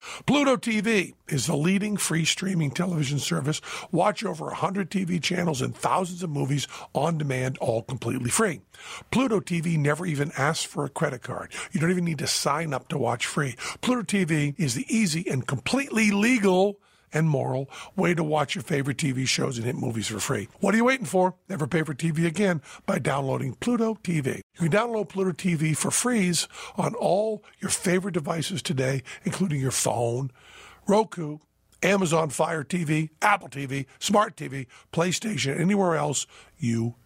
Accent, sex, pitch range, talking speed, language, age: American, male, 140-190 Hz, 170 wpm, English, 50-69